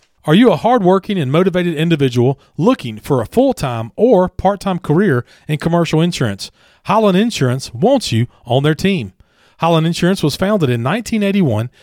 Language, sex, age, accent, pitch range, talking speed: English, male, 40-59, American, 130-185 Hz, 160 wpm